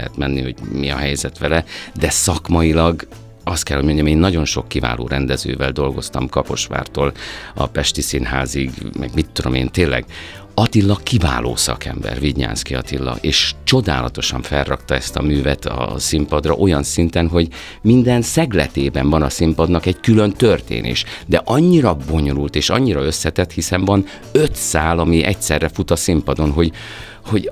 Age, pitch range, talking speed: 50-69, 70-95 Hz, 150 wpm